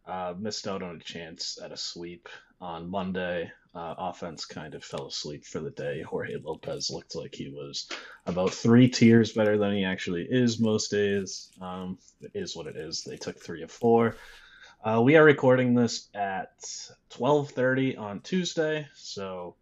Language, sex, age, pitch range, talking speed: English, male, 20-39, 95-120 Hz, 175 wpm